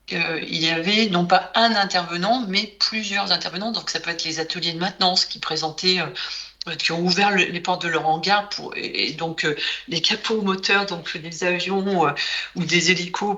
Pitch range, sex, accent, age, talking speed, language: 165-200 Hz, female, French, 50-69, 205 wpm, French